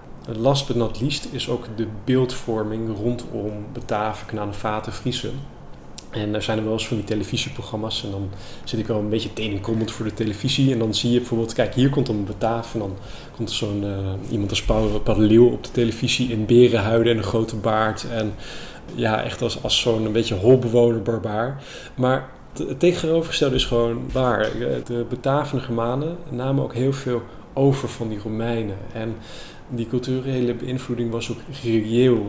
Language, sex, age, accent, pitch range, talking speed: Dutch, male, 20-39, Dutch, 110-125 Hz, 180 wpm